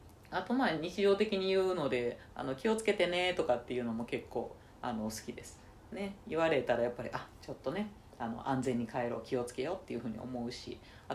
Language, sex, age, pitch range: Japanese, female, 40-59, 120-205 Hz